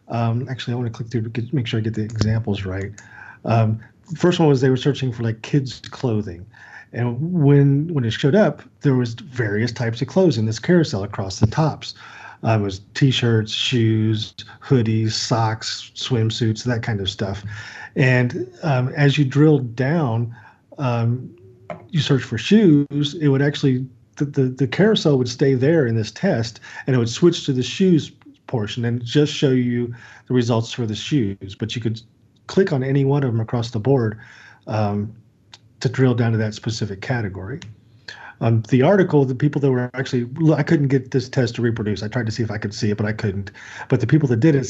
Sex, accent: male, American